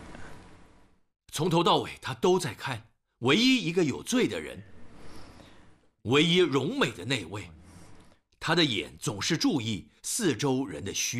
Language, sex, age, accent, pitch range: Chinese, male, 50-69, native, 95-155 Hz